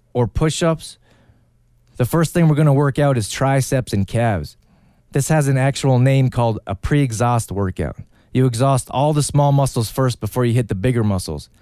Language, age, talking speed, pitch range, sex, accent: English, 30-49, 180 wpm, 115-145 Hz, male, American